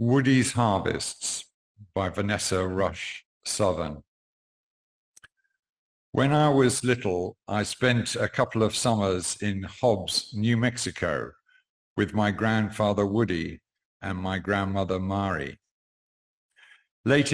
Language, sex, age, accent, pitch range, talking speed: English, male, 50-69, British, 95-125 Hz, 100 wpm